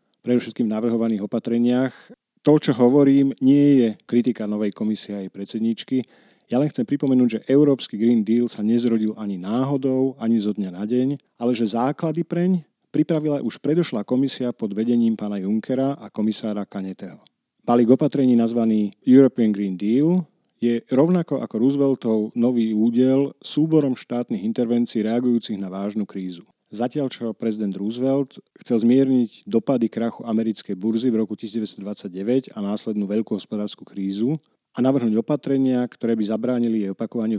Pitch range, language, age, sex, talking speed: 105-130 Hz, Slovak, 40-59, male, 150 wpm